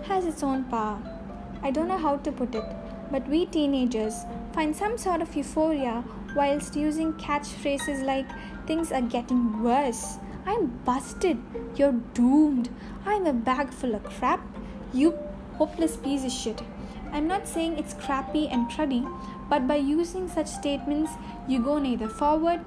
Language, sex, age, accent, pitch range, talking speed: Tamil, female, 10-29, native, 240-305 Hz, 155 wpm